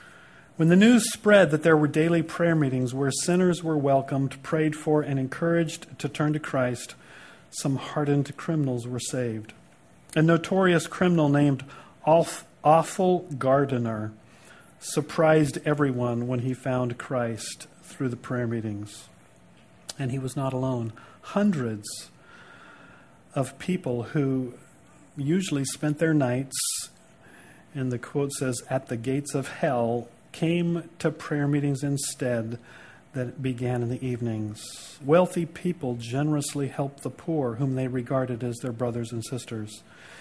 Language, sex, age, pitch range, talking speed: English, male, 40-59, 125-160 Hz, 135 wpm